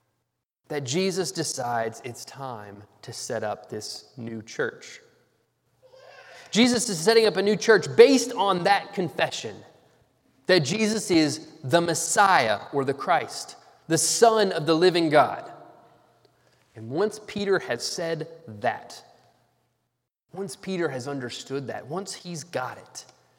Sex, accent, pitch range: male, American, 125-190 Hz